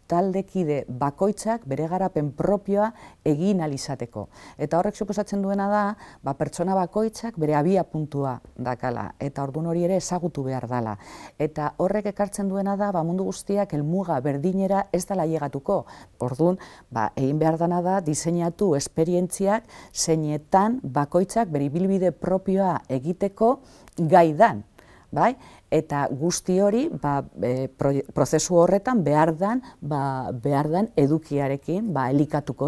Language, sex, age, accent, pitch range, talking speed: Spanish, female, 40-59, Spanish, 140-190 Hz, 120 wpm